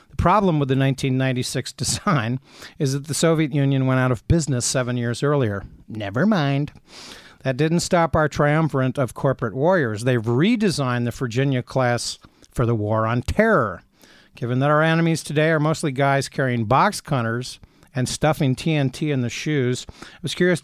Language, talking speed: English, 170 wpm